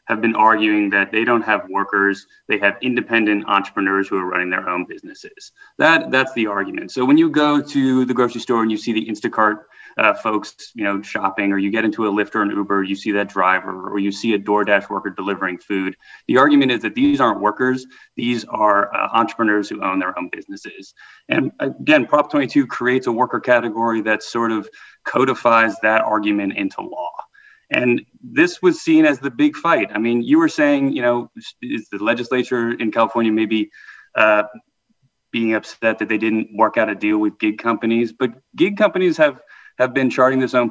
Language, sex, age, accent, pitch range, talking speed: English, male, 30-49, American, 105-140 Hz, 200 wpm